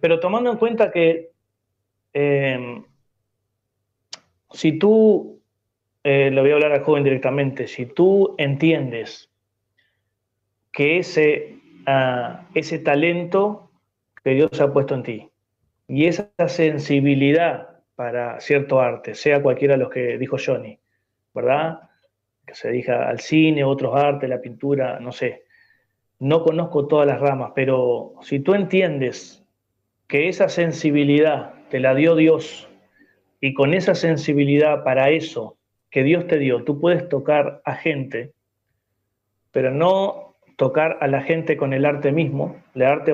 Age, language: 30-49, Spanish